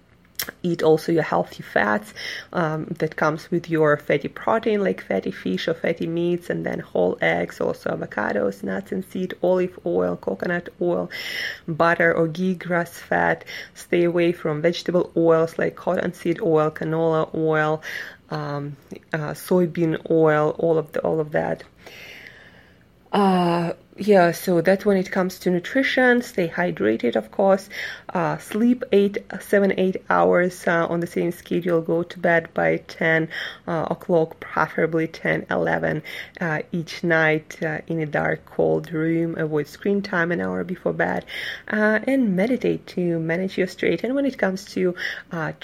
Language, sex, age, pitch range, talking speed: English, female, 20-39, 160-185 Hz, 160 wpm